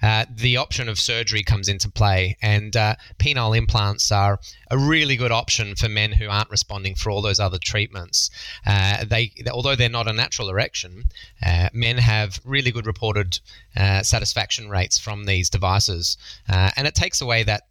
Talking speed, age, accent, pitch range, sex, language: 180 wpm, 20-39, Australian, 100-120 Hz, male, English